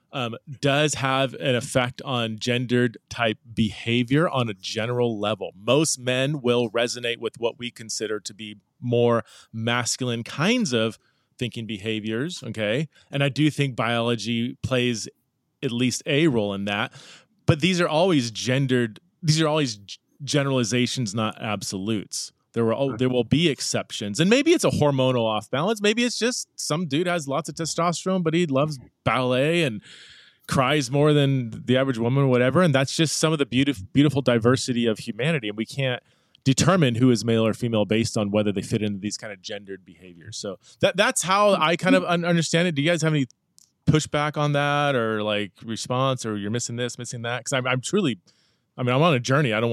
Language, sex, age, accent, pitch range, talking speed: English, male, 30-49, American, 115-145 Hz, 190 wpm